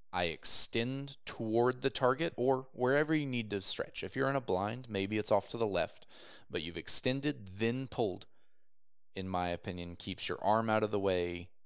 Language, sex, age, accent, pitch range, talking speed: English, male, 20-39, American, 90-120 Hz, 190 wpm